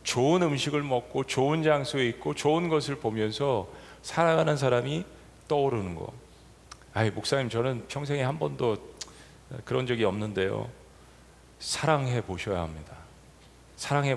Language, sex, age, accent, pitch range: Korean, male, 40-59, native, 110-145 Hz